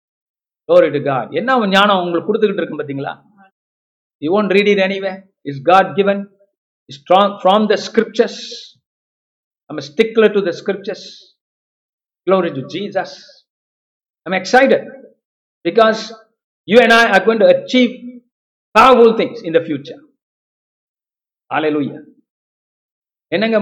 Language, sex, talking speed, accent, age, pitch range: Tamil, male, 115 wpm, native, 50-69, 150-205 Hz